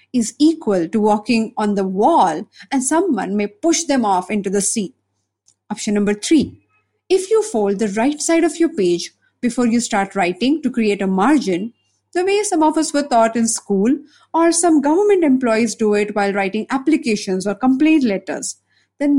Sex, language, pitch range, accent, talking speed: female, English, 200-290 Hz, Indian, 180 wpm